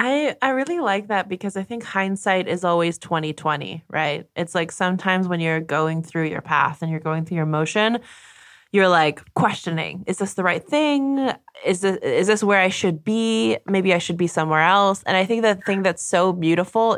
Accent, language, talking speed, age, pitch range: American, English, 210 wpm, 20-39, 165-205 Hz